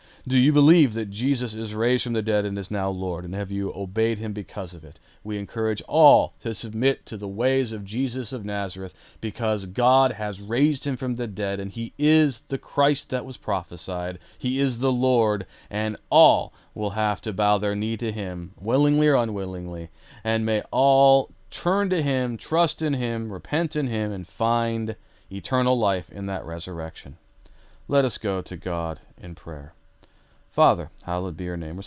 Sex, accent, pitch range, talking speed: male, American, 90-115 Hz, 185 wpm